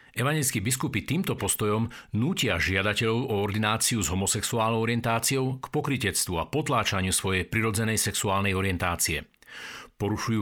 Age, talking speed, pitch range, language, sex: 50-69, 115 wpm, 100-125 Hz, Slovak, male